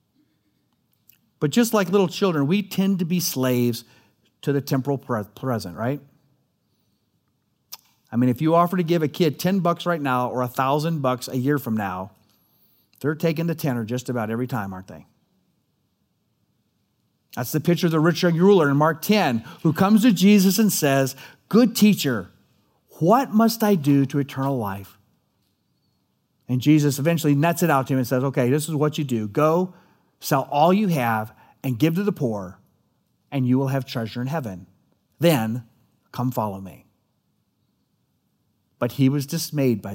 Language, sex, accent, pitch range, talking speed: English, male, American, 110-160 Hz, 170 wpm